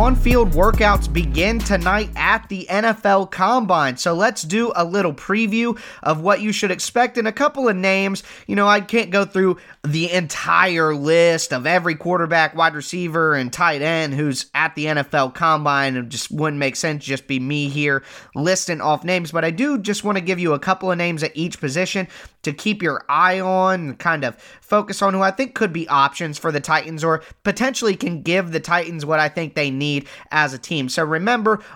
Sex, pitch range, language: male, 155-195 Hz, English